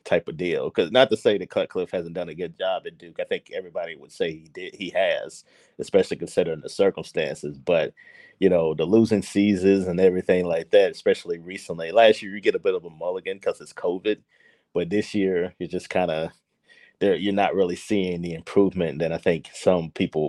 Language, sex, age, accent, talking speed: English, male, 30-49, American, 215 wpm